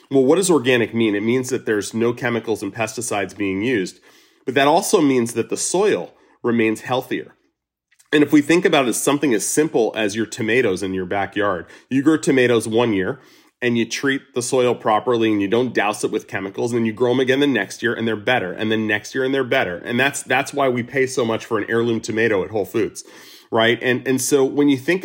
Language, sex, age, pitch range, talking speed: English, male, 30-49, 110-130 Hz, 235 wpm